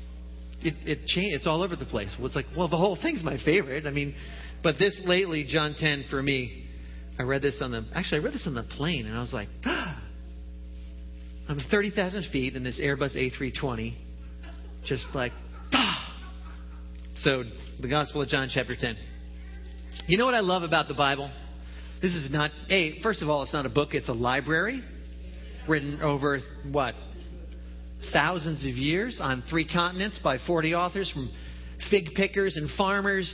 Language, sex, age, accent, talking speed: English, male, 40-59, American, 180 wpm